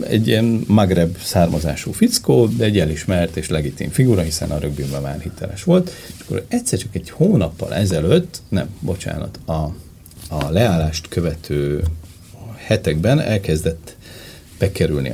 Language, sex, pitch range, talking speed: Hungarian, male, 80-110 Hz, 130 wpm